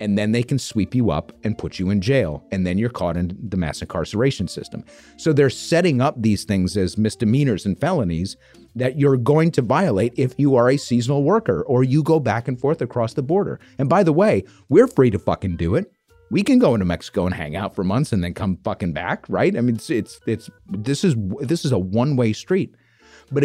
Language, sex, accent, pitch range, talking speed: English, male, American, 105-145 Hz, 235 wpm